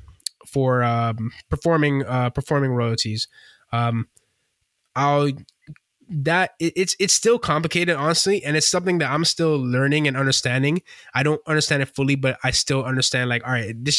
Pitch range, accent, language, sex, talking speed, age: 120-145 Hz, American, English, male, 160 wpm, 20-39